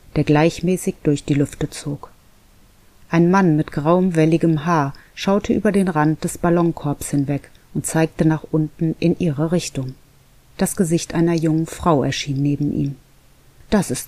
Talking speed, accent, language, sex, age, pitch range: 155 wpm, German, German, female, 30-49, 140-175 Hz